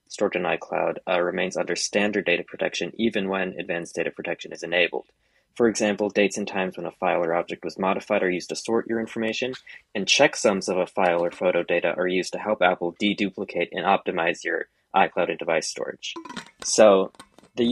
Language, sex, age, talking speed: English, male, 20-39, 195 wpm